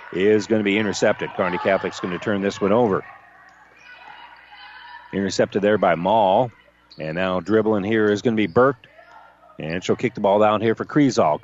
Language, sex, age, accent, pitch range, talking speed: English, male, 40-59, American, 105-135 Hz, 185 wpm